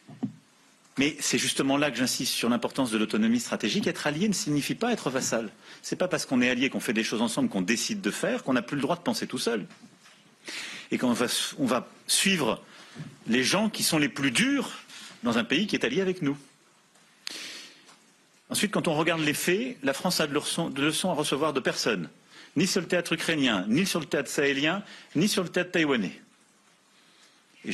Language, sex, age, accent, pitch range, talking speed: French, male, 40-59, French, 155-205 Hz, 205 wpm